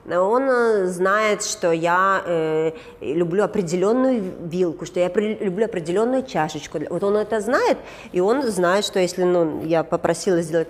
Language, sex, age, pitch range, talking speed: Russian, female, 30-49, 175-255 Hz, 150 wpm